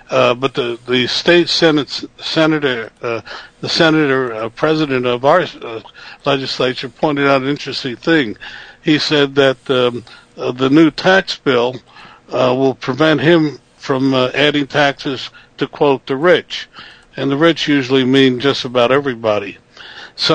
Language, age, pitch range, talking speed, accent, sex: English, 60-79, 135-165 Hz, 145 wpm, American, male